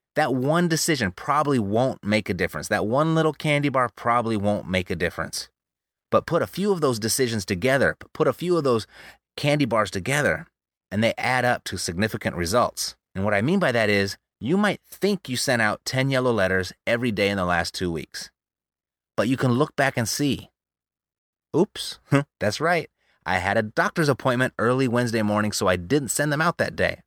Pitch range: 105-155 Hz